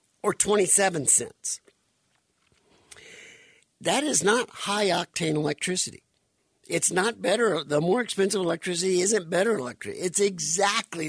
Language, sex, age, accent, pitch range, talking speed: English, male, 60-79, American, 140-220 Hz, 115 wpm